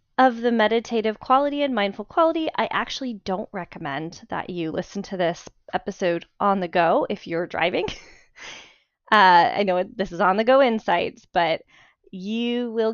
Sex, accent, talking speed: female, American, 160 wpm